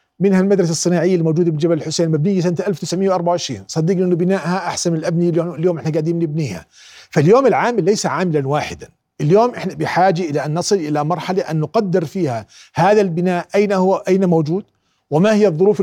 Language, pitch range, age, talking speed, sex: Arabic, 165-205 Hz, 40-59, 165 wpm, male